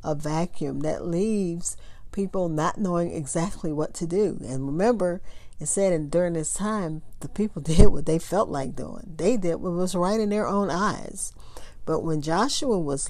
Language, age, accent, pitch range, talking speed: English, 50-69, American, 155-195 Hz, 185 wpm